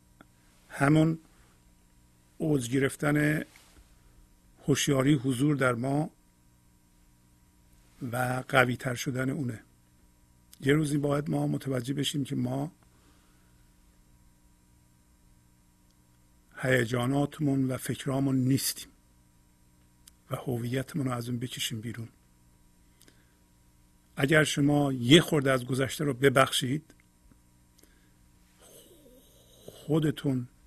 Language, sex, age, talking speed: Persian, male, 50-69, 75 wpm